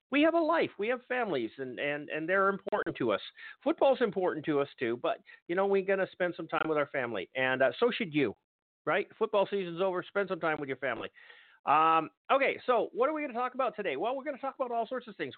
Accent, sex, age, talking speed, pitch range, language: American, male, 50-69, 260 wpm, 150-230 Hz, English